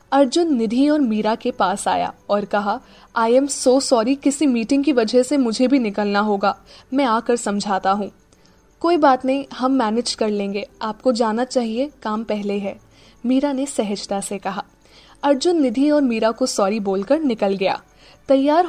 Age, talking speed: 10-29, 175 wpm